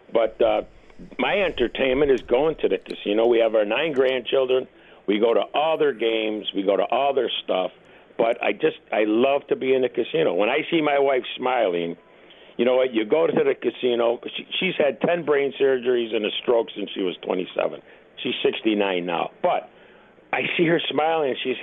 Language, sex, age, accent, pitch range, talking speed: English, male, 60-79, American, 130-180 Hz, 200 wpm